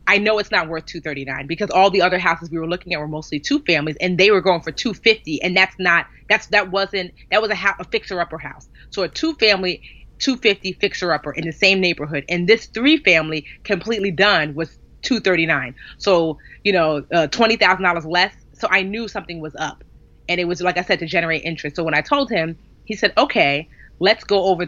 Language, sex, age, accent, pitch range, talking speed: English, female, 30-49, American, 160-200 Hz, 235 wpm